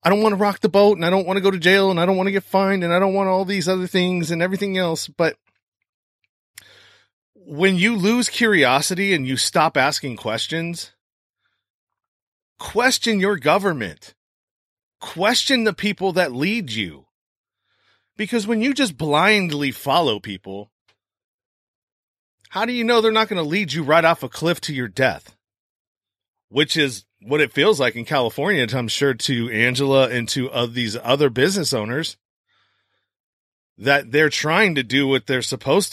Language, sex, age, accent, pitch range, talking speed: English, male, 30-49, American, 135-195 Hz, 170 wpm